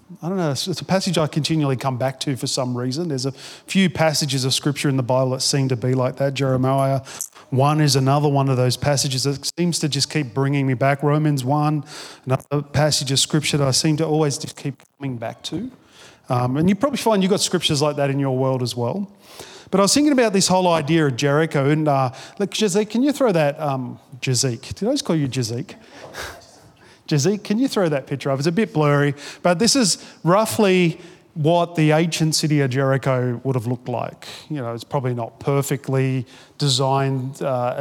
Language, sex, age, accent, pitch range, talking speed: English, male, 30-49, Australian, 135-165 Hz, 215 wpm